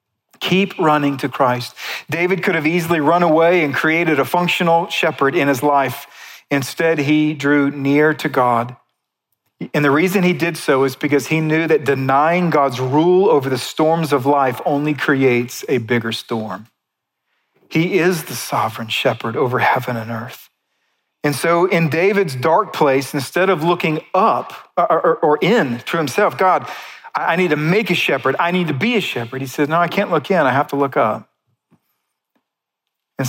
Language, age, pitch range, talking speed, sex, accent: English, 40-59, 135-175 Hz, 175 wpm, male, American